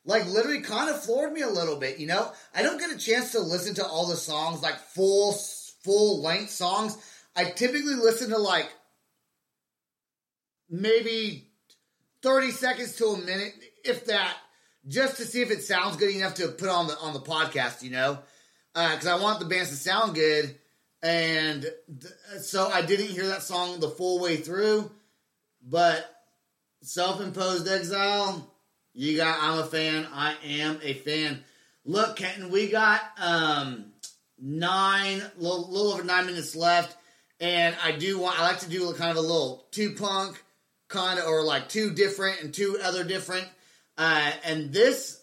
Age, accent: 30-49, American